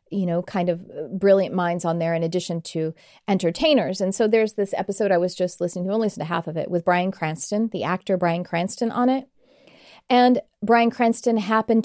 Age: 40-59